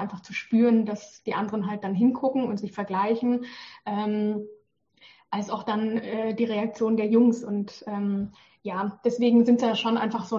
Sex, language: female, German